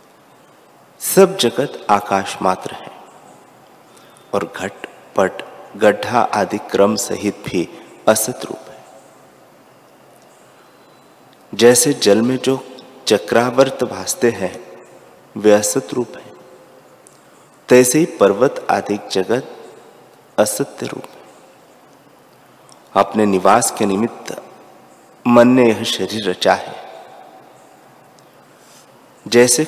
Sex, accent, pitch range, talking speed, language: male, native, 100-125 Hz, 95 wpm, Hindi